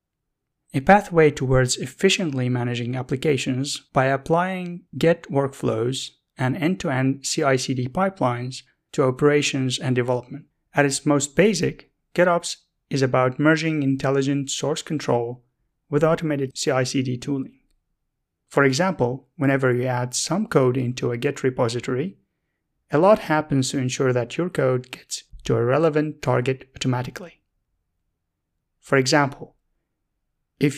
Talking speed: 120 wpm